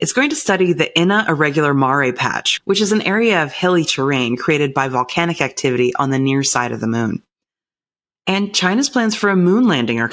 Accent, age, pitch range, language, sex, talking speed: American, 30-49, 135-180 Hz, English, female, 210 wpm